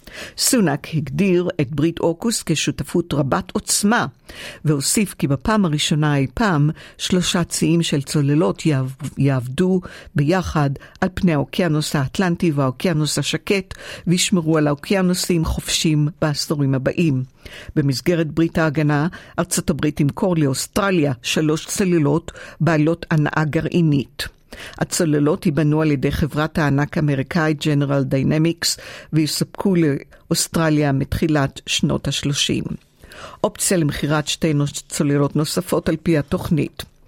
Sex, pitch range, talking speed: female, 145-175 Hz, 105 wpm